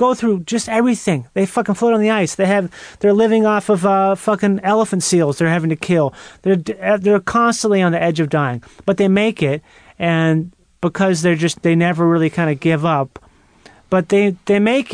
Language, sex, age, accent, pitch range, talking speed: English, male, 30-49, American, 160-200 Hz, 205 wpm